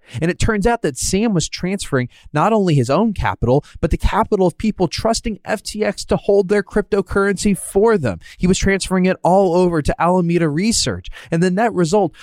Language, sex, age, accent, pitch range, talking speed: English, male, 20-39, American, 110-180 Hz, 190 wpm